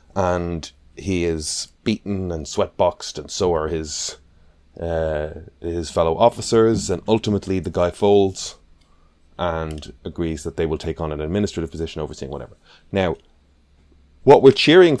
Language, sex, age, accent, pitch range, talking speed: English, male, 30-49, Irish, 75-100 Hz, 145 wpm